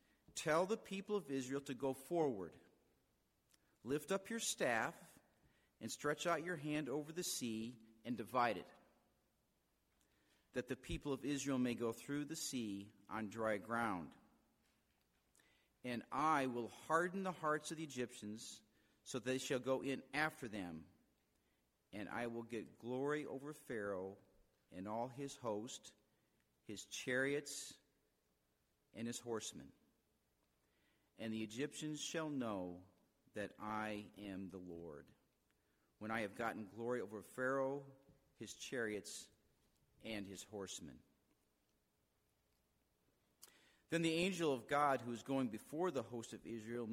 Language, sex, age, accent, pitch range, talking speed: English, male, 50-69, American, 110-145 Hz, 130 wpm